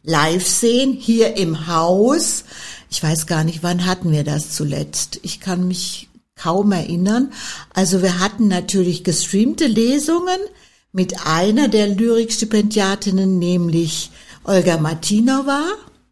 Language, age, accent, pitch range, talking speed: German, 60-79, German, 170-220 Hz, 120 wpm